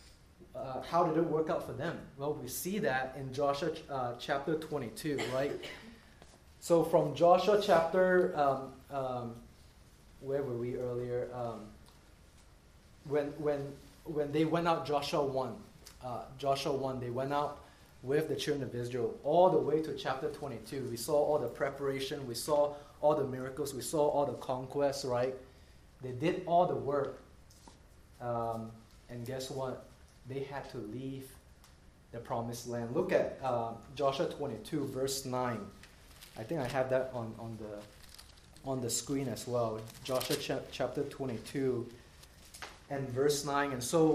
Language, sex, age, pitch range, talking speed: English, male, 20-39, 120-145 Hz, 155 wpm